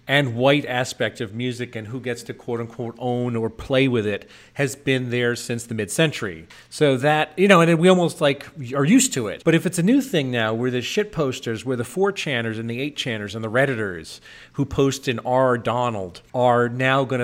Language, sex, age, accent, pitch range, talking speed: English, male, 40-59, American, 115-150 Hz, 225 wpm